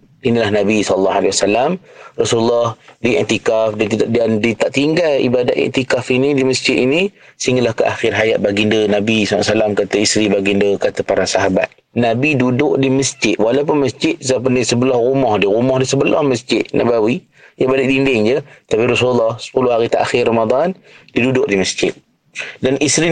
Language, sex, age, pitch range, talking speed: Malay, male, 30-49, 110-140 Hz, 165 wpm